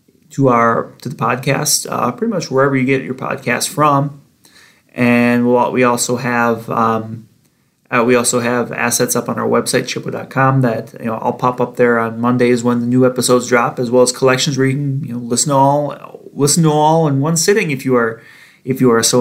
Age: 30-49